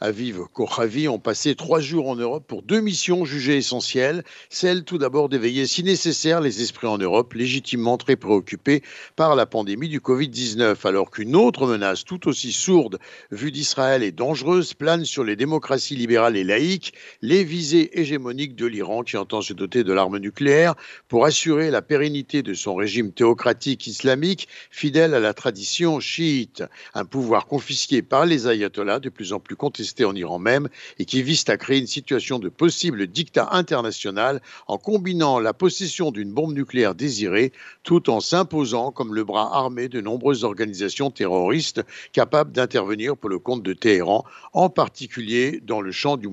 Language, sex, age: Italian, male, 60-79